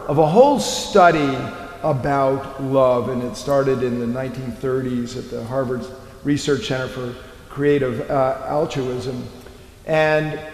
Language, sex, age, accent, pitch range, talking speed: English, male, 50-69, American, 130-155 Hz, 125 wpm